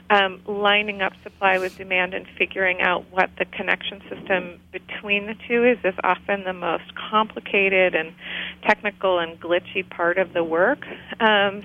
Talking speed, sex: 160 wpm, female